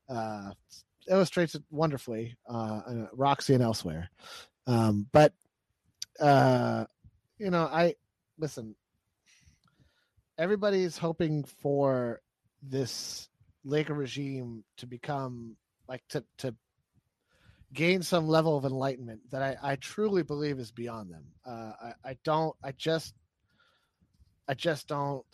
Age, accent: 30-49, American